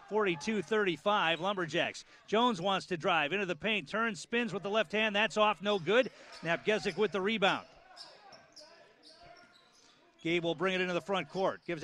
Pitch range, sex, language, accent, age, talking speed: 175-235 Hz, male, English, American, 40-59, 160 wpm